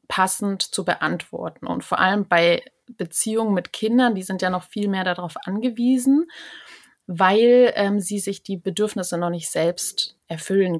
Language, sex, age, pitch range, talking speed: German, female, 30-49, 185-235 Hz, 155 wpm